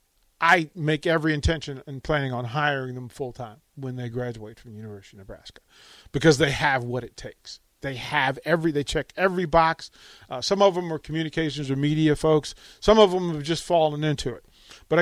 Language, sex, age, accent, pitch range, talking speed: English, male, 40-59, American, 130-170 Hz, 200 wpm